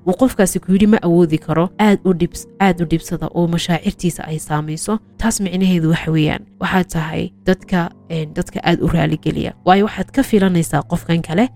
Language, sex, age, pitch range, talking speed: English, female, 20-39, 165-195 Hz, 155 wpm